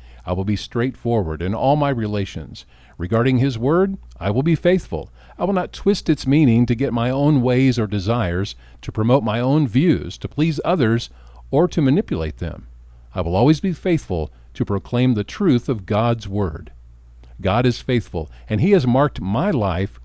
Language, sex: English, male